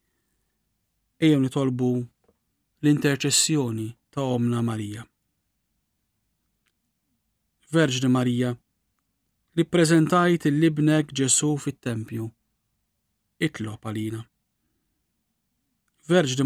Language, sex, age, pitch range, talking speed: English, male, 40-59, 115-155 Hz, 60 wpm